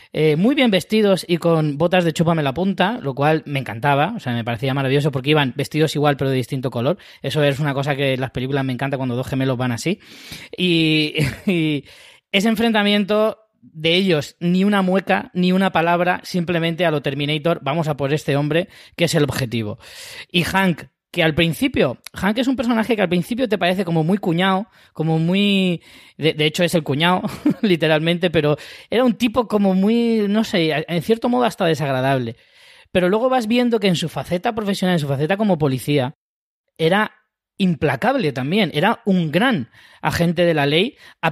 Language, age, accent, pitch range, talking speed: Spanish, 20-39, Spanish, 145-195 Hz, 190 wpm